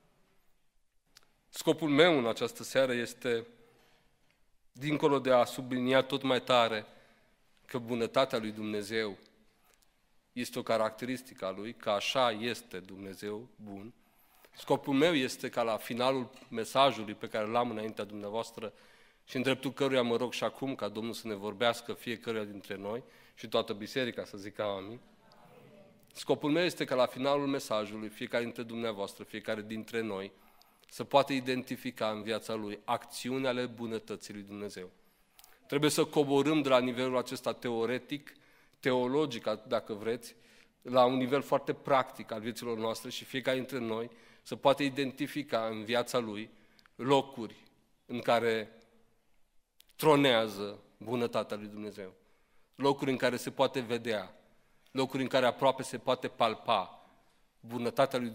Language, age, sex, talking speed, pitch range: Romanian, 40-59, male, 140 wpm, 110-130 Hz